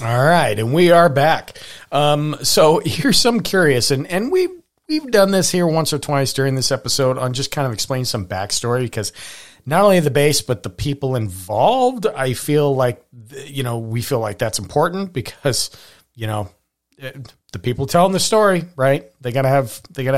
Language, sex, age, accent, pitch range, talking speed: English, male, 40-59, American, 110-150 Hz, 195 wpm